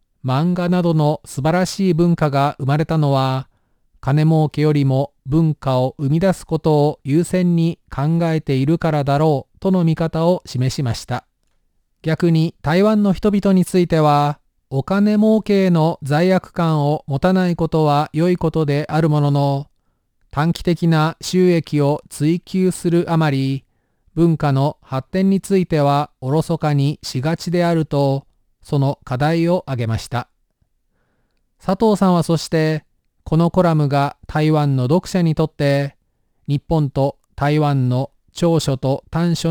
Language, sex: Japanese, male